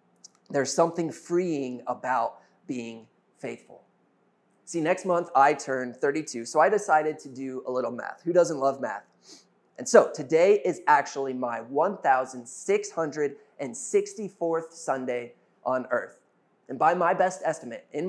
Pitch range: 130-170 Hz